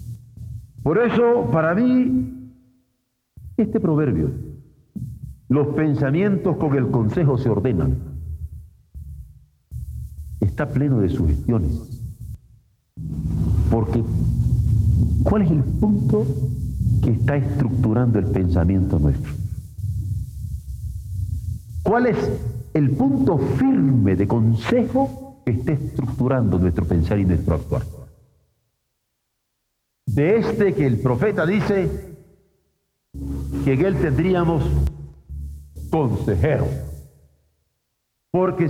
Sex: male